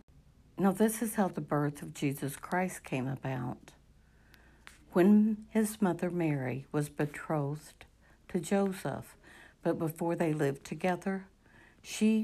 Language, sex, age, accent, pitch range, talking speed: English, female, 60-79, American, 145-175 Hz, 125 wpm